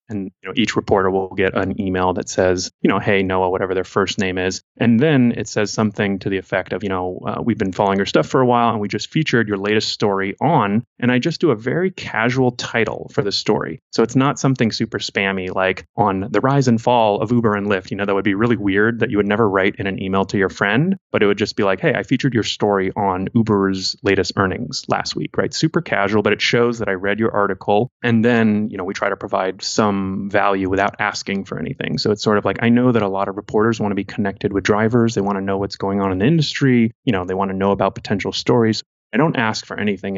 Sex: male